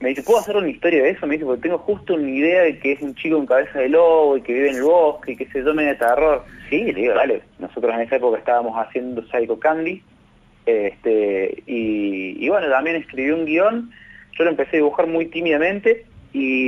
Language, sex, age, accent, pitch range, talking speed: Spanish, male, 20-39, Argentinian, 125-190 Hz, 230 wpm